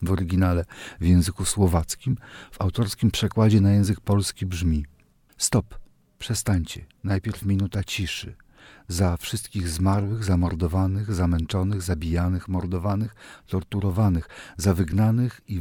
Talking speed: 110 wpm